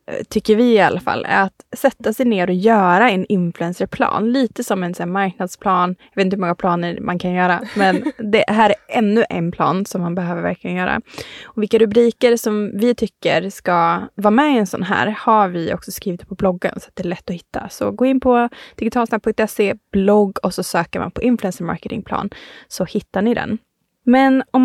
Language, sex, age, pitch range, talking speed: Swedish, female, 20-39, 190-240 Hz, 205 wpm